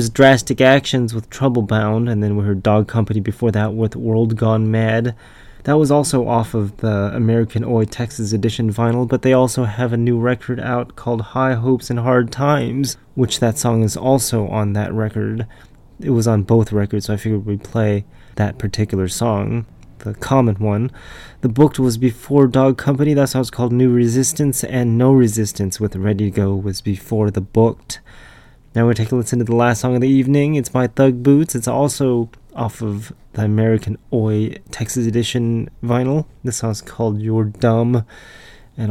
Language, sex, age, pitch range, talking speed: English, male, 20-39, 105-125 Hz, 190 wpm